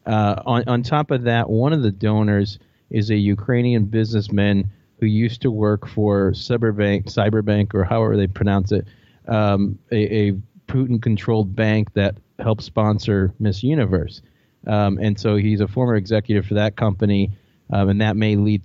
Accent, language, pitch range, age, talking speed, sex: American, English, 100-115 Hz, 30-49, 165 wpm, male